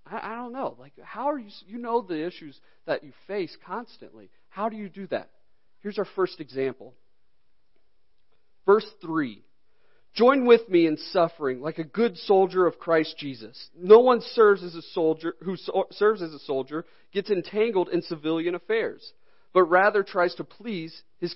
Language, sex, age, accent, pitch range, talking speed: English, male, 40-59, American, 170-240 Hz, 170 wpm